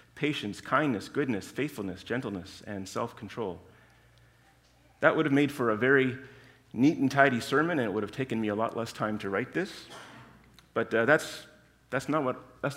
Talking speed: 180 wpm